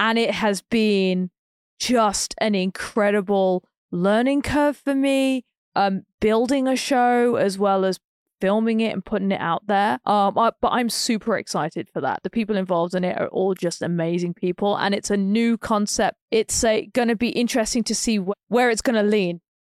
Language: English